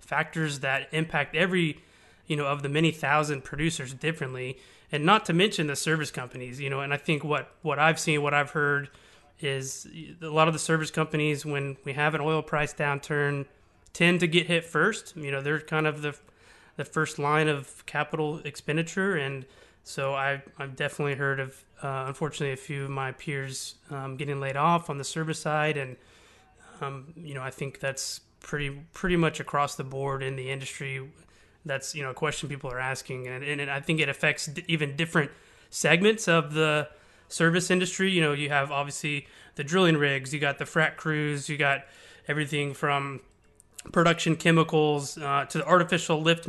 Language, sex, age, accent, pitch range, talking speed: English, male, 30-49, American, 140-160 Hz, 190 wpm